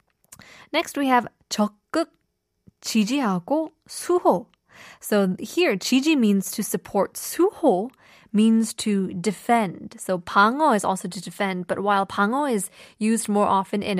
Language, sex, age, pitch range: Korean, female, 20-39, 195-250 Hz